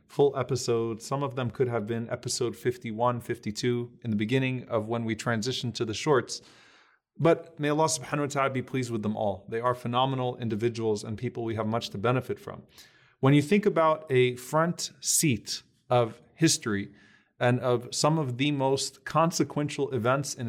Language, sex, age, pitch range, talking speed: English, male, 30-49, 120-150 Hz, 180 wpm